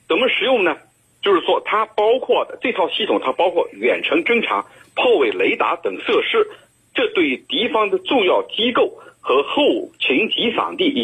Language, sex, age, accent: Chinese, male, 50-69, native